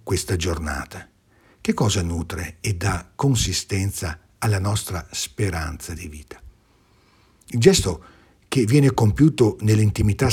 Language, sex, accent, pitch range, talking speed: Italian, male, native, 90-120 Hz, 110 wpm